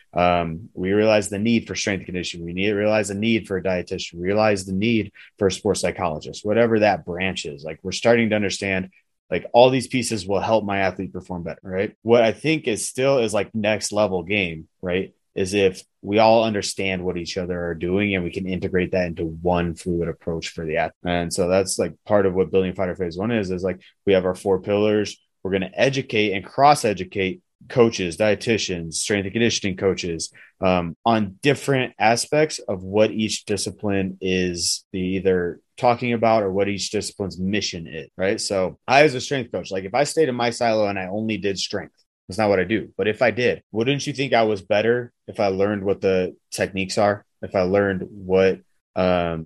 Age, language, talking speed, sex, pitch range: 30-49, English, 210 wpm, male, 90-110 Hz